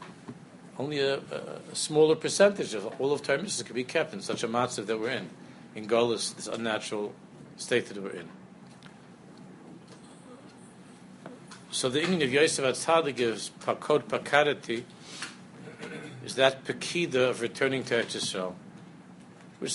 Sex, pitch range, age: male, 115-145 Hz, 60-79